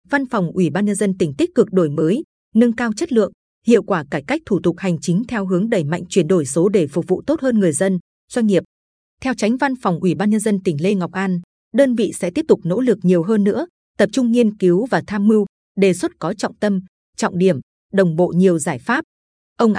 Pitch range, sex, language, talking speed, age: 180-230 Hz, female, Vietnamese, 245 wpm, 20-39